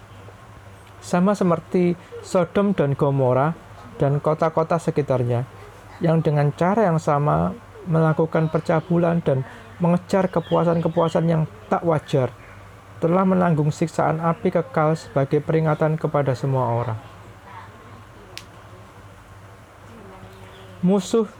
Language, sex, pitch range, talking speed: Indonesian, male, 105-170 Hz, 90 wpm